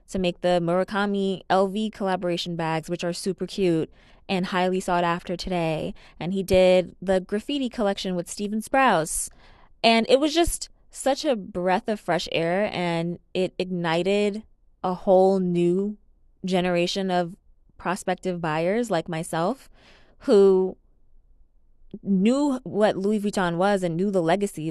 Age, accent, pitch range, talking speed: 20-39, American, 165-195 Hz, 140 wpm